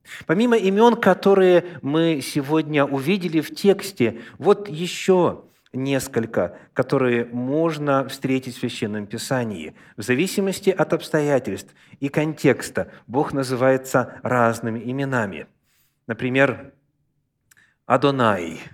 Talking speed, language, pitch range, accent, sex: 95 wpm, Russian, 130-185 Hz, native, male